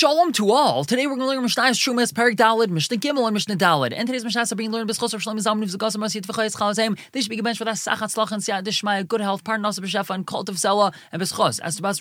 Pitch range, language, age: 150-200 Hz, English, 20-39